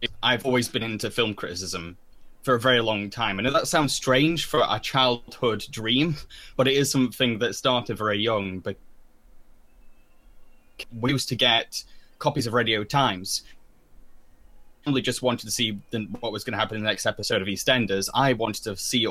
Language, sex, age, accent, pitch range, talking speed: English, male, 10-29, British, 105-125 Hz, 180 wpm